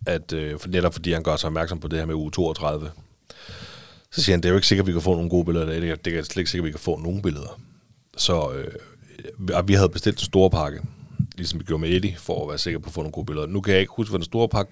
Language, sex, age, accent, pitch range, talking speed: Danish, male, 30-49, native, 85-100 Hz, 295 wpm